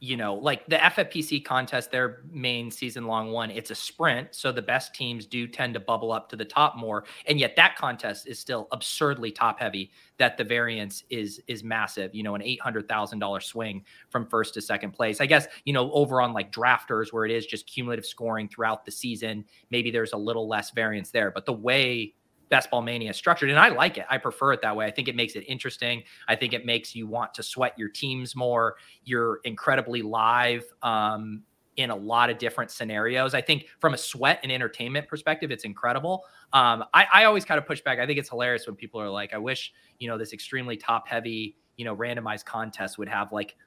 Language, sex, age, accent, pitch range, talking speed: English, male, 30-49, American, 110-125 Hz, 225 wpm